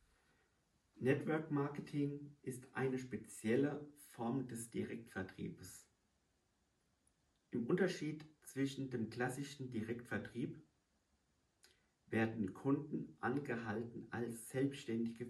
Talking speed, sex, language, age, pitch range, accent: 75 wpm, male, German, 50-69, 105-135 Hz, German